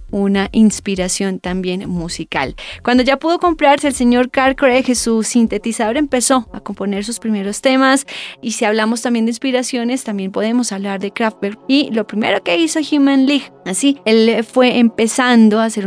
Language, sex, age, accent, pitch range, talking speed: Spanish, female, 20-39, Colombian, 205-255 Hz, 165 wpm